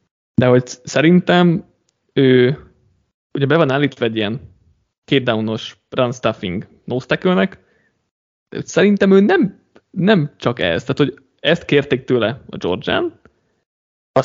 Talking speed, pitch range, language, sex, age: 100 wpm, 120-150 Hz, Hungarian, male, 20-39